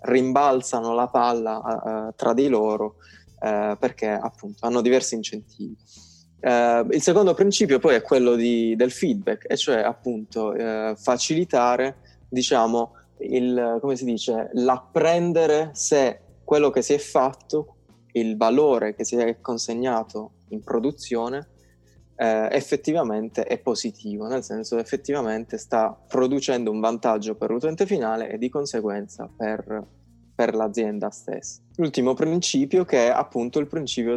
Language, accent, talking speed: Italian, native, 135 wpm